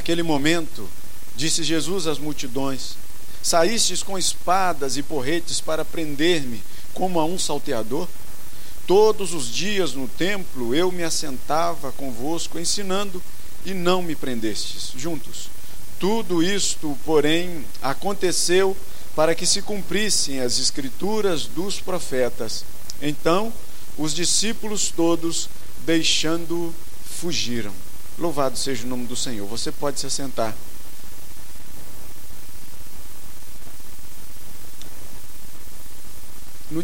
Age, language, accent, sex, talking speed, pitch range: 50-69, Portuguese, Brazilian, male, 100 wpm, 125-175 Hz